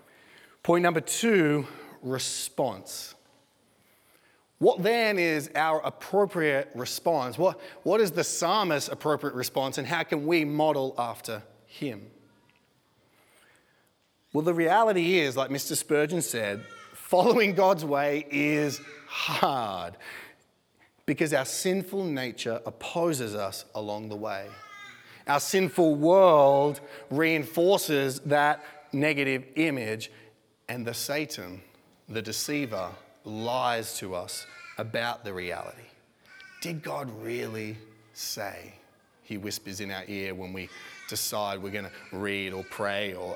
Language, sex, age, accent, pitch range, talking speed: English, male, 30-49, Australian, 110-170 Hz, 115 wpm